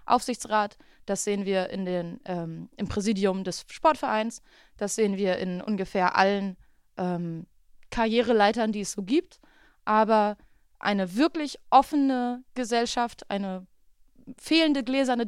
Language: German